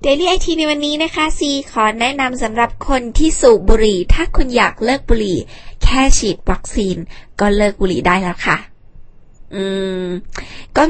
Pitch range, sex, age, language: 195-245 Hz, female, 20-39, Thai